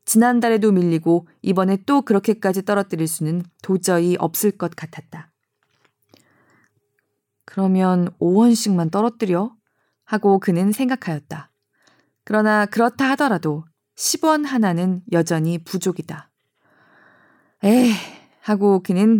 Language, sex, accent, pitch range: Korean, female, native, 170-230 Hz